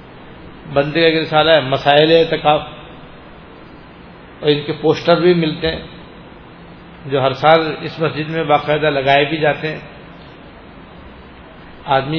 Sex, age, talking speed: male, 60-79, 125 wpm